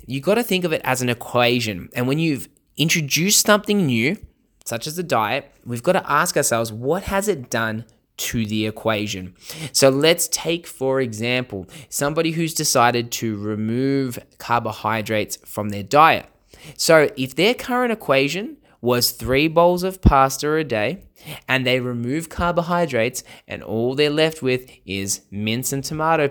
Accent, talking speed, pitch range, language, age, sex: Australian, 160 wpm, 115-150 Hz, English, 20-39, male